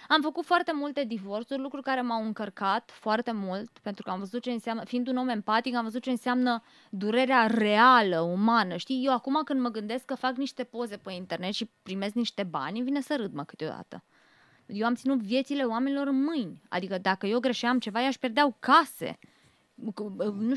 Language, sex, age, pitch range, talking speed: Romanian, female, 20-39, 220-275 Hz, 195 wpm